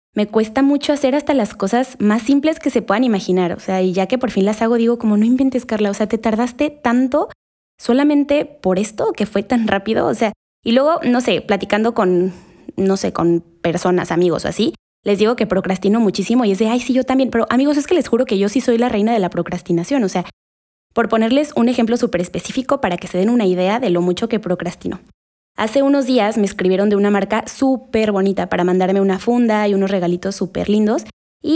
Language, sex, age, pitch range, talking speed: Spanish, female, 20-39, 190-245 Hz, 230 wpm